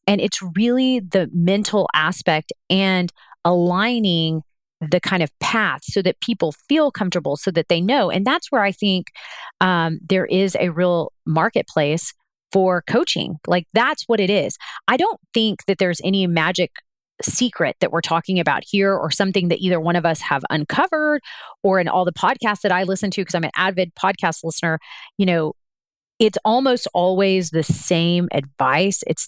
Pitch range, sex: 170-215 Hz, female